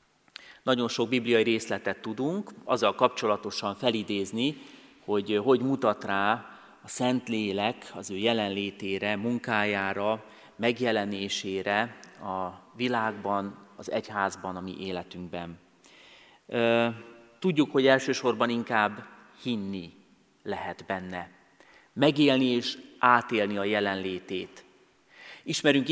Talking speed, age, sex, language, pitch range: 95 wpm, 30-49, male, Hungarian, 100-130 Hz